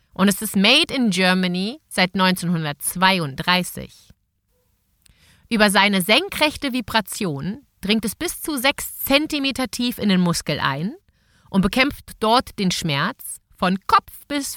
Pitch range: 185-245 Hz